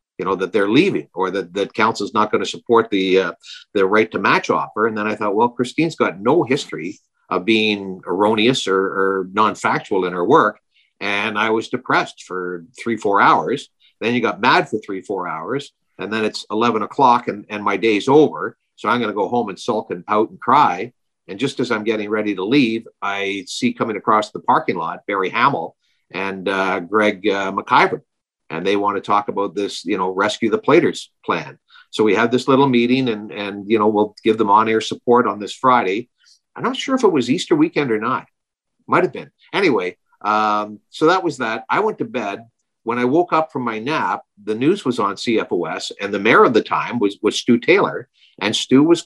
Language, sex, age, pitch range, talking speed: English, male, 50-69, 100-120 Hz, 220 wpm